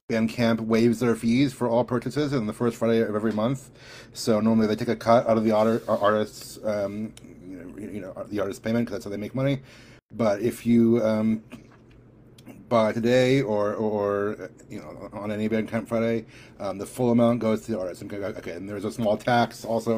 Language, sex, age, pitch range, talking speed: English, male, 30-49, 105-120 Hz, 205 wpm